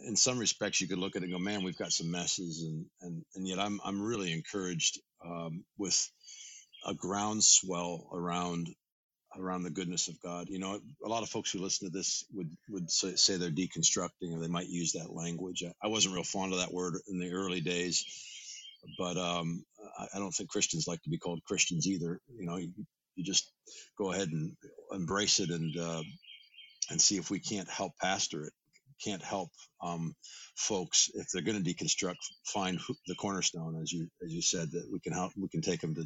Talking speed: 210 wpm